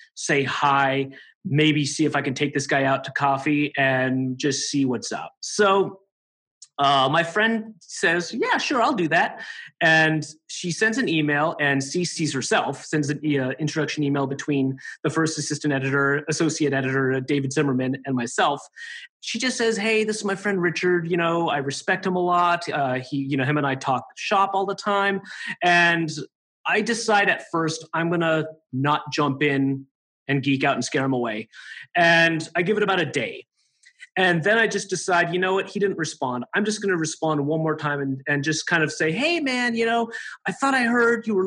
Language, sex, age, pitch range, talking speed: English, male, 30-49, 145-195 Hz, 205 wpm